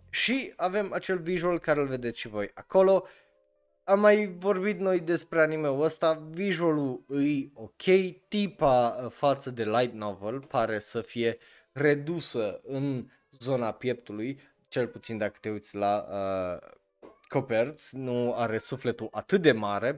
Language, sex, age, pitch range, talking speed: Romanian, male, 20-39, 105-150 Hz, 140 wpm